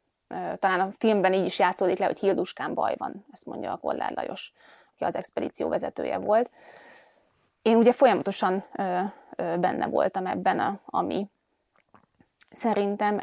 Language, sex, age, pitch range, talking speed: Hungarian, female, 20-39, 185-210 Hz, 135 wpm